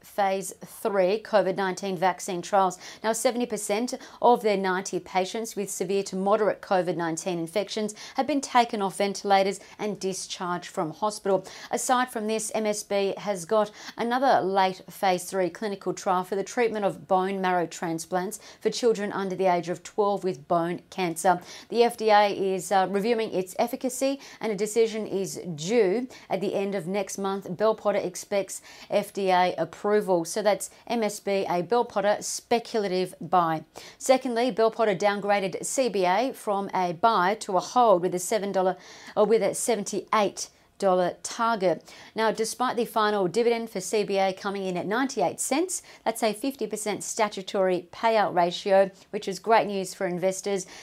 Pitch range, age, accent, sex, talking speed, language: 185-220 Hz, 40-59, Australian, female, 150 wpm, English